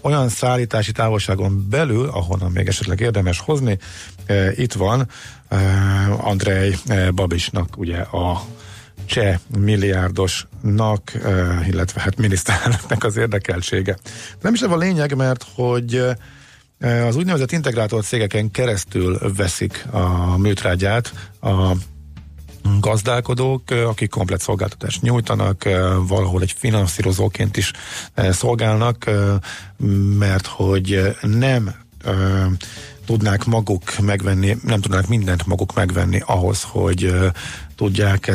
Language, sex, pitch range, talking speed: Hungarian, male, 95-115 Hz, 105 wpm